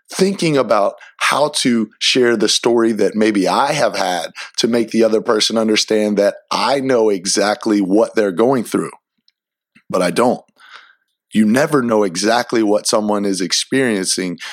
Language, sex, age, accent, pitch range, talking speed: English, male, 30-49, American, 110-155 Hz, 155 wpm